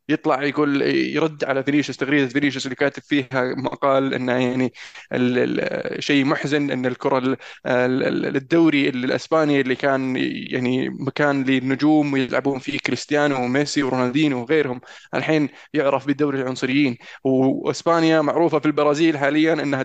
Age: 20-39